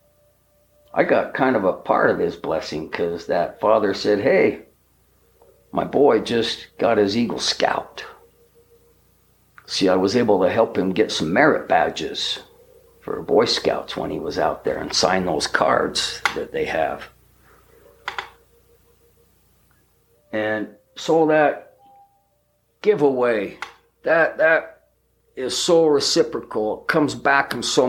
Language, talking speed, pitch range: English, 130 wpm, 100-150 Hz